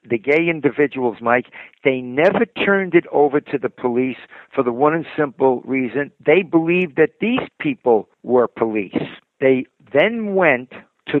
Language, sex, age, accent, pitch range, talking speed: English, male, 60-79, American, 120-145 Hz, 155 wpm